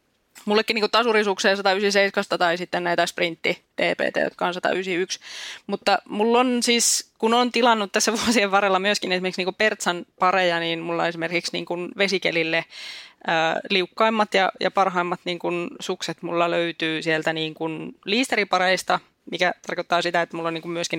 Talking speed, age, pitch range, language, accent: 150 wpm, 20-39, 170-200 Hz, Finnish, native